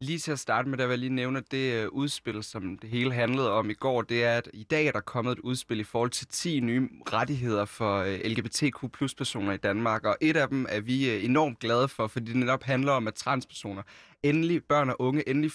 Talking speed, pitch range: 235 wpm, 115-150 Hz